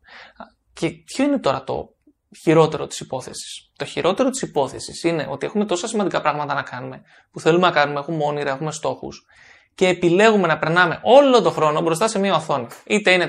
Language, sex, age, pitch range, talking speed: Greek, male, 20-39, 160-205 Hz, 185 wpm